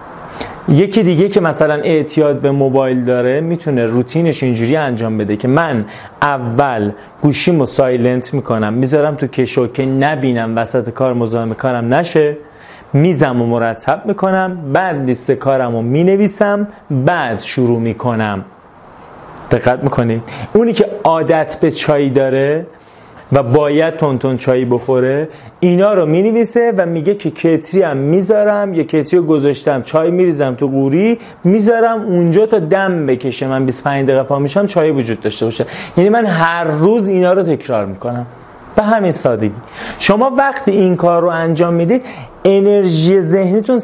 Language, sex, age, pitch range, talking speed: Persian, male, 30-49, 130-180 Hz, 145 wpm